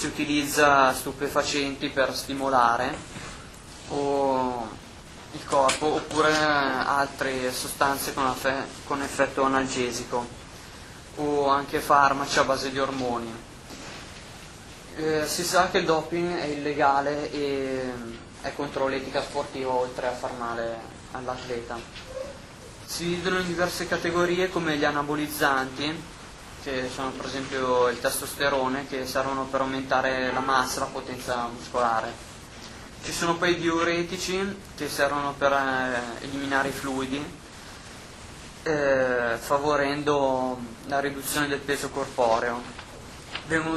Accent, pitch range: native, 125-145 Hz